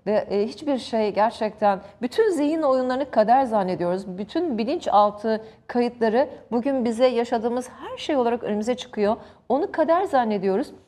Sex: female